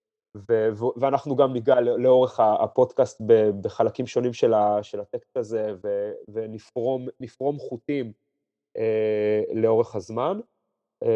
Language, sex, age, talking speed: Hebrew, male, 30-49, 75 wpm